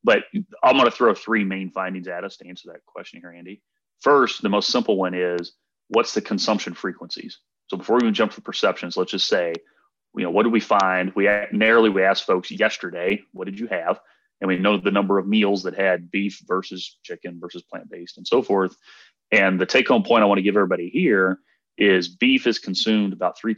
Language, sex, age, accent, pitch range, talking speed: English, male, 30-49, American, 90-100 Hz, 215 wpm